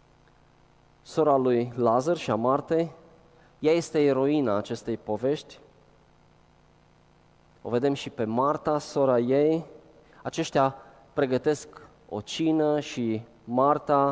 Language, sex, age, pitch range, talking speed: Romanian, male, 20-39, 115-150 Hz, 100 wpm